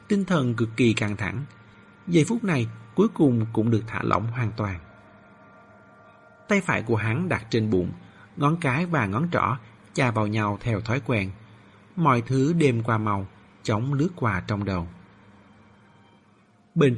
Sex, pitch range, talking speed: male, 100-130 Hz, 165 wpm